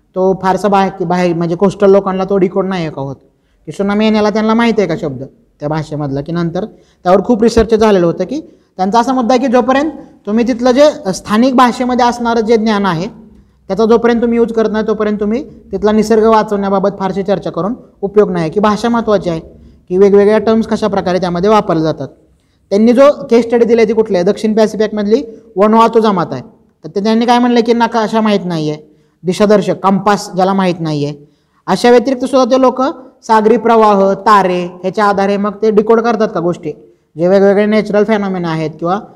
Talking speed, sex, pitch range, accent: 185 wpm, male, 180-225 Hz, native